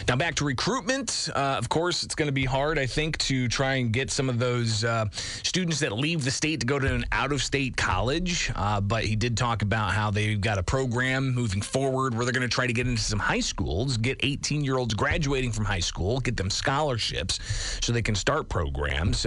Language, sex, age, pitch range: English, male, 30-49, 100-135 Hz